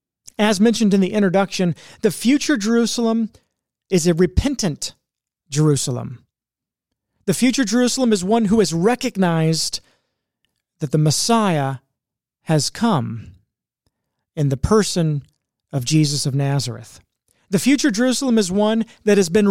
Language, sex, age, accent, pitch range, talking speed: English, male, 40-59, American, 140-205 Hz, 125 wpm